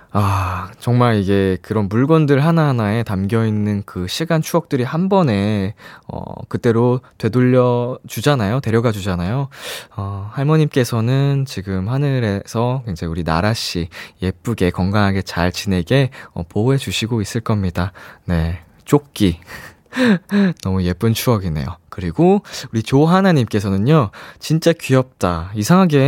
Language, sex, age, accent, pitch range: Korean, male, 20-39, native, 105-155 Hz